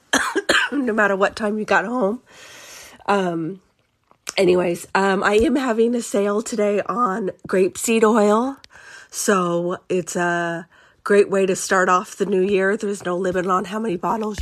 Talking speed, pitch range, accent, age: 160 wpm, 175-205 Hz, American, 30-49